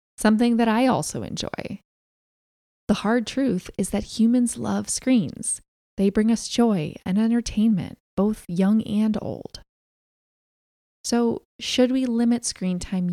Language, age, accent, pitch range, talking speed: English, 20-39, American, 175-225 Hz, 135 wpm